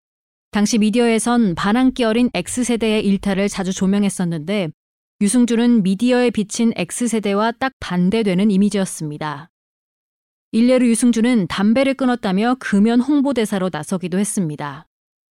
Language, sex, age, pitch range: Korean, female, 30-49, 190-240 Hz